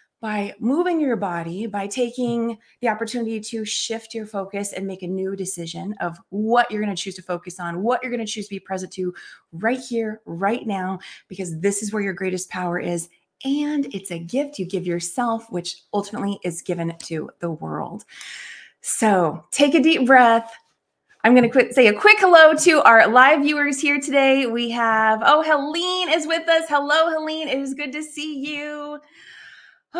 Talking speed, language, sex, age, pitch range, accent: 185 wpm, English, female, 30-49, 195-285 Hz, American